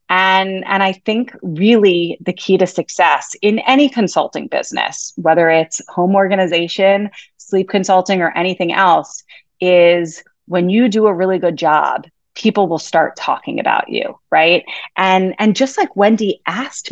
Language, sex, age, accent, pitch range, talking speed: English, female, 30-49, American, 170-215 Hz, 150 wpm